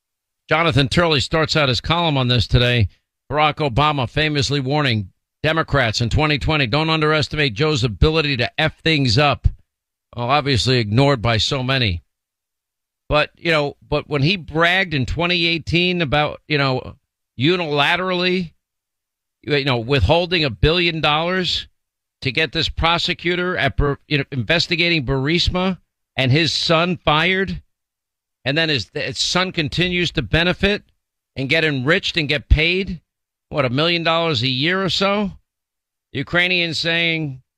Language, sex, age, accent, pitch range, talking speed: English, male, 50-69, American, 130-170 Hz, 140 wpm